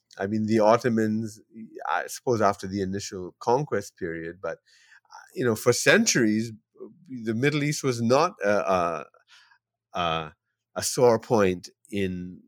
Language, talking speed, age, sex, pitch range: English, 130 wpm, 30-49, male, 90-110 Hz